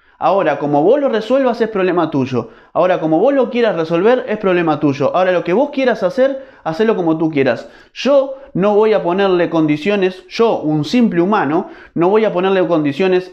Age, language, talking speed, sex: 20-39, Spanish, 190 wpm, male